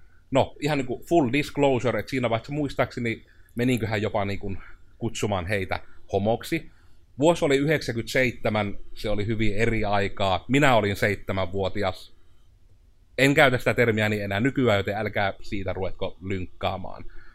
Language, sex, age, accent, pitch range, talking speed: Finnish, male, 30-49, native, 95-125 Hz, 130 wpm